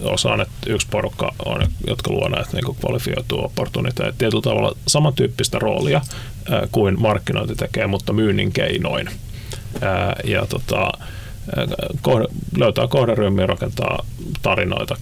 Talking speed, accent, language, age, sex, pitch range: 100 wpm, native, Finnish, 30-49, male, 100-130 Hz